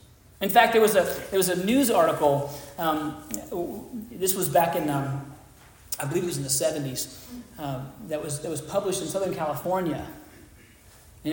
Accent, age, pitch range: American, 40-59, 145-190 Hz